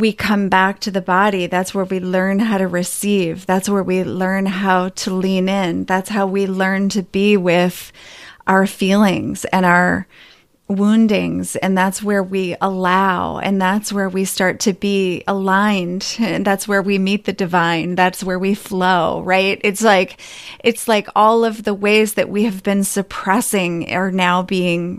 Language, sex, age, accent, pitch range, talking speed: English, female, 30-49, American, 185-205 Hz, 180 wpm